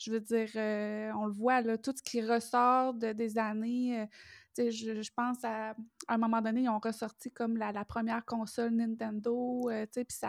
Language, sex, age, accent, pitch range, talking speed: French, female, 20-39, Canadian, 225-255 Hz, 200 wpm